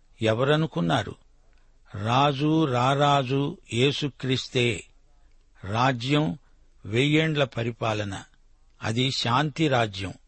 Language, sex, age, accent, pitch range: Telugu, male, 60-79, native, 120-145 Hz